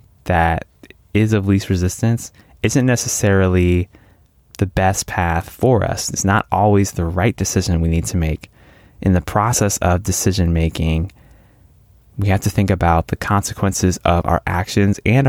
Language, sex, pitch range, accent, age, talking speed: English, male, 85-105 Hz, American, 20-39, 150 wpm